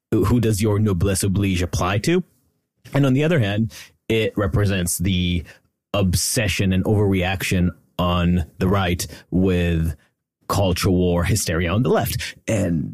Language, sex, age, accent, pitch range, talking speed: English, male, 30-49, American, 90-110 Hz, 135 wpm